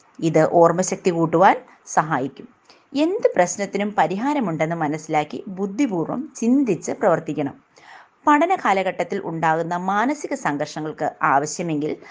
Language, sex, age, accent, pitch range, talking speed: Malayalam, female, 30-49, native, 165-250 Hz, 85 wpm